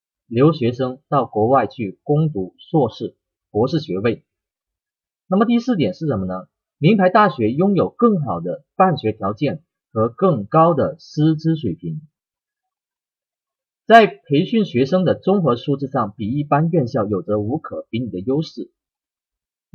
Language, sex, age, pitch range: Chinese, male, 30-49, 125-175 Hz